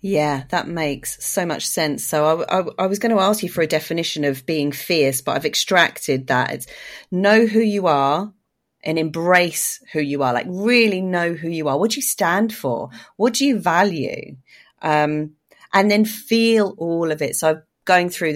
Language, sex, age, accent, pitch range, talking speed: English, female, 30-49, British, 145-180 Hz, 200 wpm